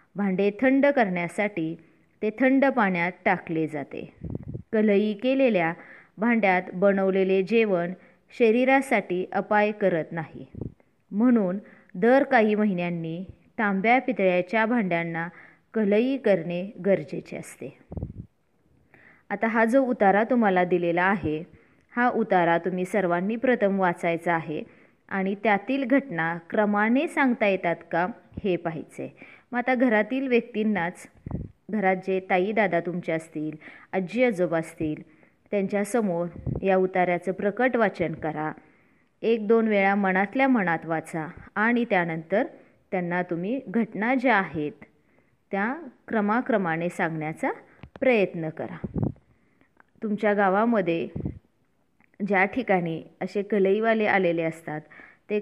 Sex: female